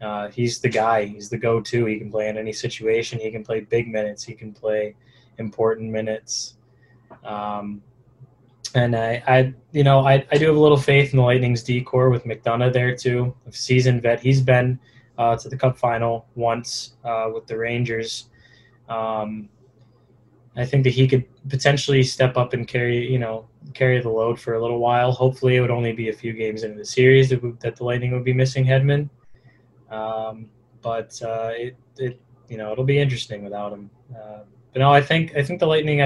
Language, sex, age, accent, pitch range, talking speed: English, male, 10-29, American, 110-130 Hz, 200 wpm